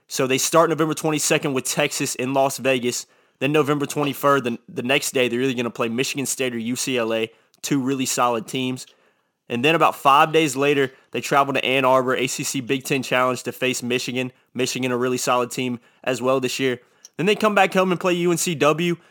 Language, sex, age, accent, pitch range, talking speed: English, male, 20-39, American, 125-145 Hz, 205 wpm